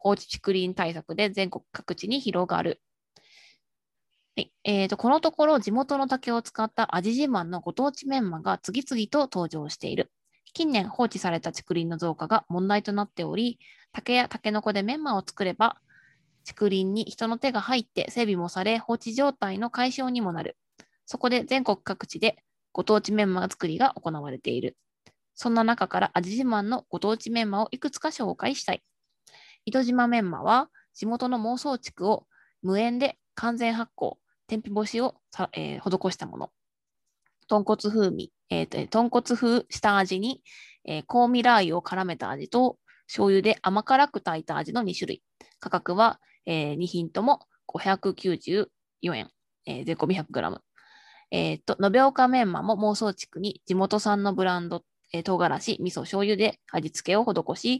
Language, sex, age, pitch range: Japanese, female, 20-39, 185-245 Hz